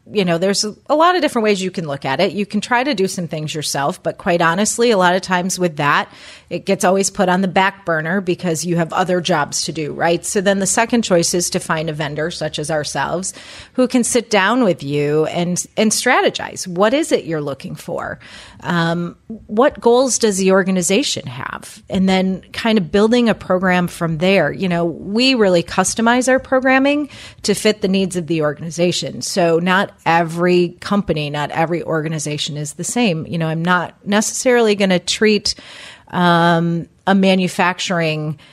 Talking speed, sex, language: 195 wpm, female, English